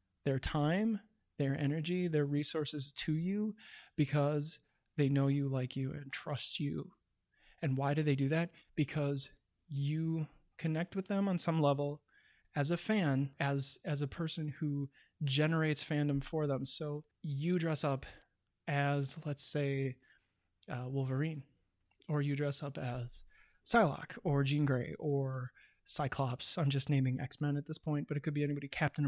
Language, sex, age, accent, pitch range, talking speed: English, male, 20-39, American, 135-160 Hz, 155 wpm